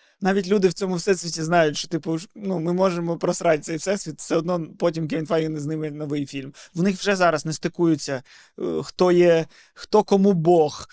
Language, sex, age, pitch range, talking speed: Ukrainian, male, 20-39, 150-190 Hz, 185 wpm